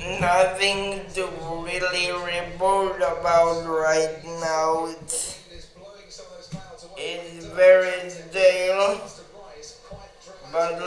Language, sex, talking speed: English, male, 65 wpm